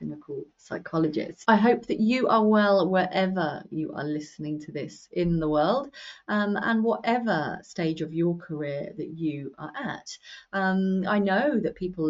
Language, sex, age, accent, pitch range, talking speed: English, female, 30-49, British, 160-230 Hz, 165 wpm